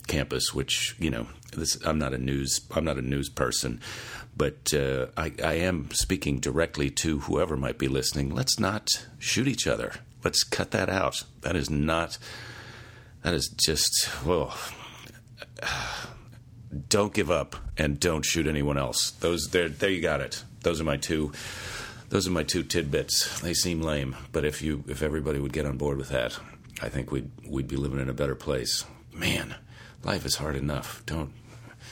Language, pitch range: English, 70-110 Hz